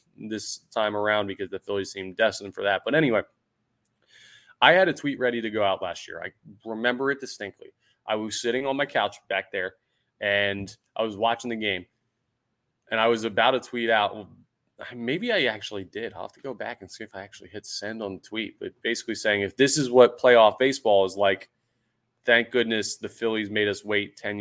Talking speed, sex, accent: 210 wpm, male, American